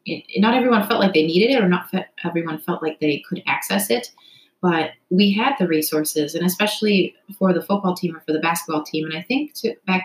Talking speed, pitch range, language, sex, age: 215 wpm, 160-205 Hz, English, female, 20-39